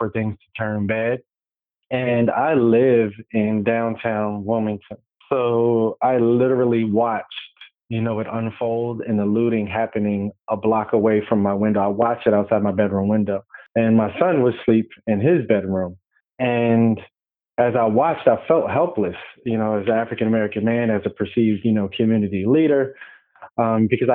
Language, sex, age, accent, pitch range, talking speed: English, male, 20-39, American, 105-120 Hz, 165 wpm